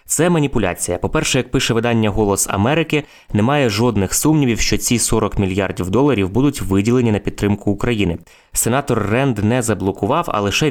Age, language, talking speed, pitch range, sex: 20-39, Ukrainian, 150 wpm, 100-120 Hz, male